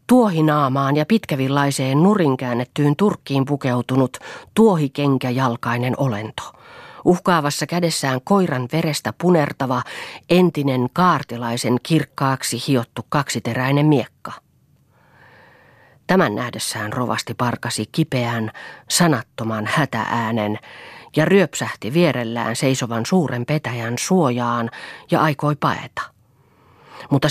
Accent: native